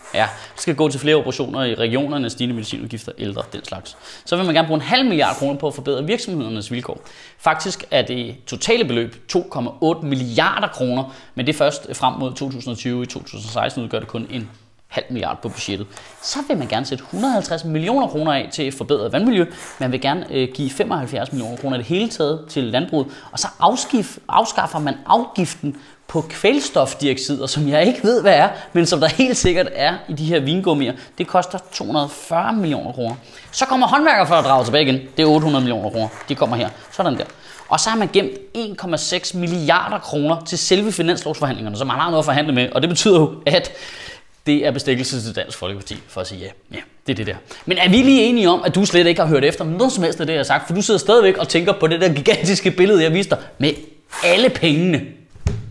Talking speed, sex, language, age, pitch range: 210 wpm, male, Danish, 20-39, 130-180 Hz